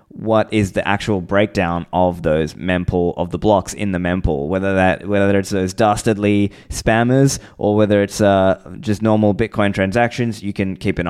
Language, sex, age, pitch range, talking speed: English, male, 20-39, 95-115 Hz, 180 wpm